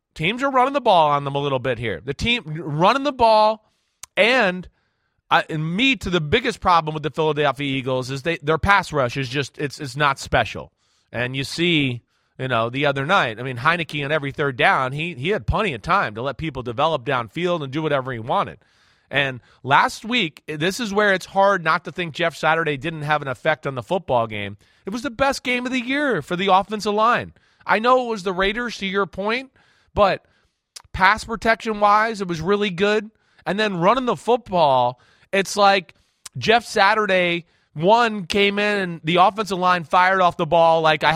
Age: 30-49